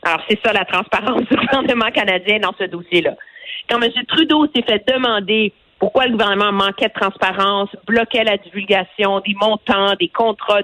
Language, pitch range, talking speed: French, 185-260 Hz, 170 wpm